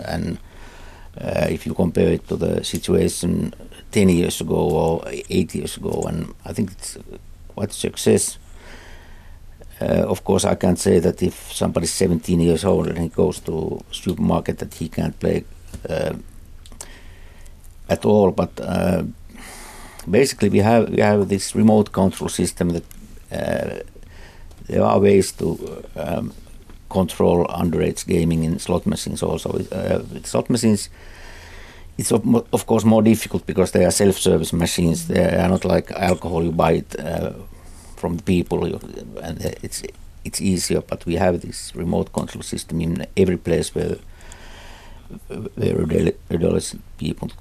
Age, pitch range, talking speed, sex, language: 60-79, 80-95 Hz, 150 wpm, male, Finnish